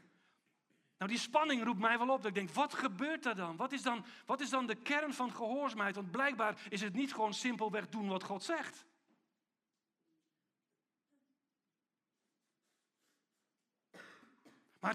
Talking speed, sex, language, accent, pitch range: 135 wpm, male, Dutch, Dutch, 195-265 Hz